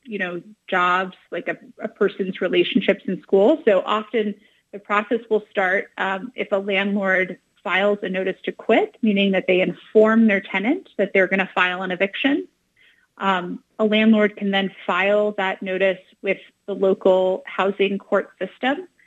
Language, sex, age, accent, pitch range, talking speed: English, female, 30-49, American, 185-225 Hz, 165 wpm